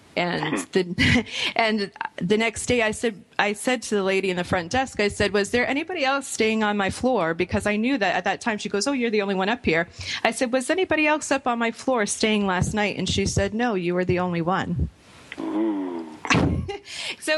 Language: English